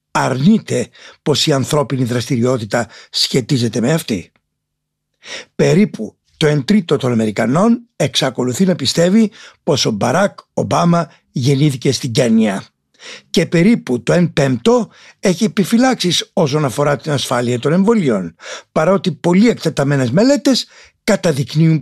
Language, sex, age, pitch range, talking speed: Greek, male, 60-79, 135-185 Hz, 115 wpm